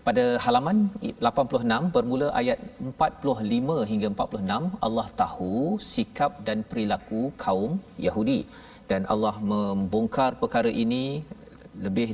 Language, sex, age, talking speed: Malayalam, male, 40-59, 105 wpm